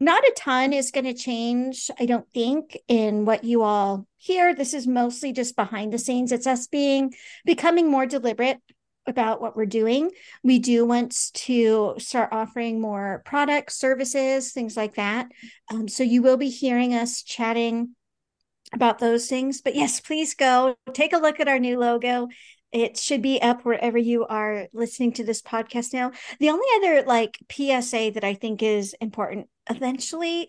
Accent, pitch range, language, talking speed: American, 225-270 Hz, English, 175 wpm